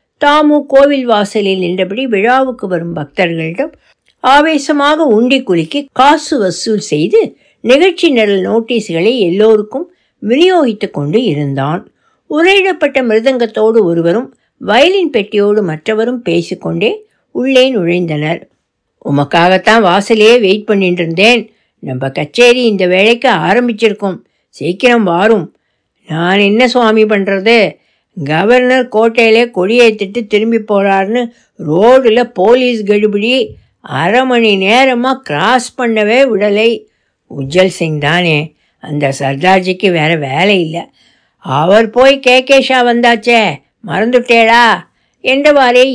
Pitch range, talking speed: 185-250 Hz, 100 wpm